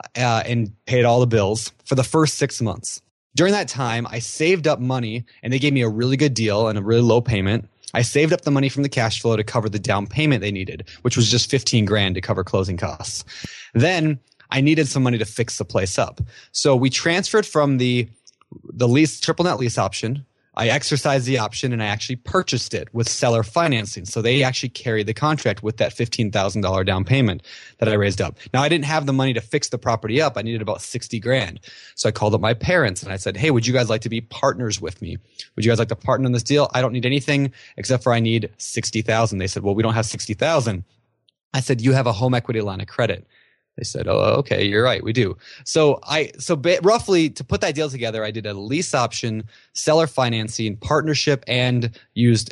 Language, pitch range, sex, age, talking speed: English, 105-130 Hz, male, 20-39, 230 wpm